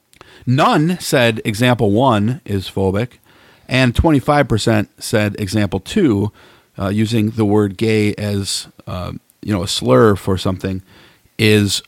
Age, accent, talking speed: 40-59, American, 125 wpm